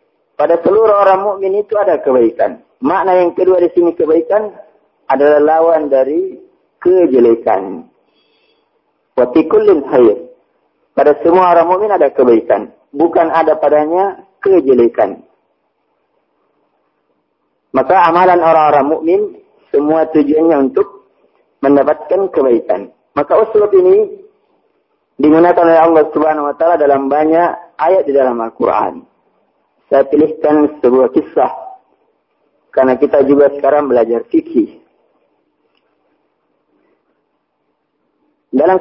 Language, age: English, 50-69